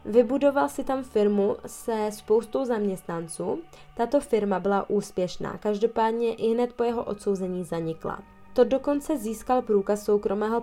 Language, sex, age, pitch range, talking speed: Czech, female, 20-39, 190-230 Hz, 130 wpm